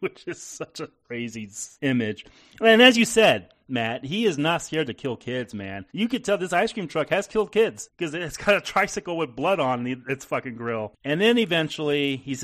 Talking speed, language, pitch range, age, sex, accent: 210 wpm, English, 105-150 Hz, 30-49, male, American